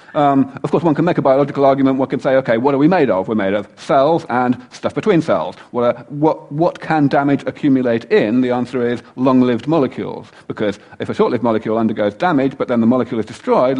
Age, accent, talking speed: 40-59, British, 230 wpm